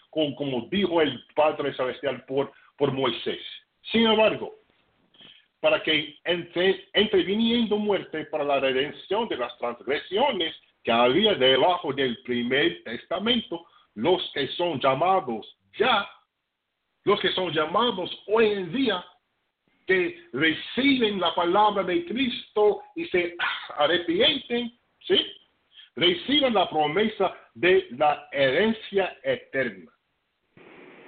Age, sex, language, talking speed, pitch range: 50-69, male, English, 110 wpm, 140-210 Hz